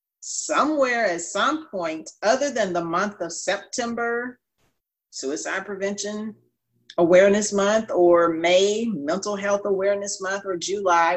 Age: 40-59